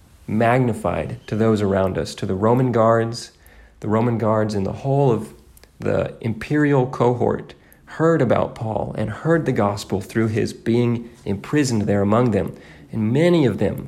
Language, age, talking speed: English, 40-59, 160 wpm